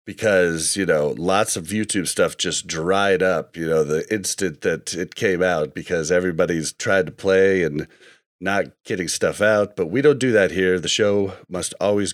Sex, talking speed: male, 190 wpm